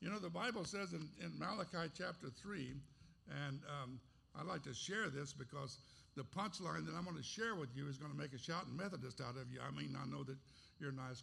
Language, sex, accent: English, male, American